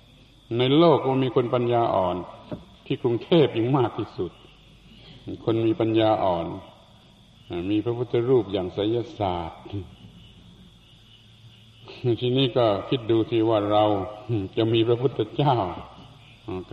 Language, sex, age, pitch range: Thai, male, 60-79, 115-140 Hz